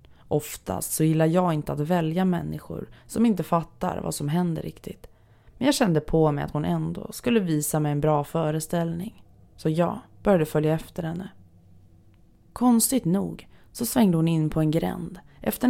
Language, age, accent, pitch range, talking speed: Swedish, 20-39, native, 145-175 Hz, 170 wpm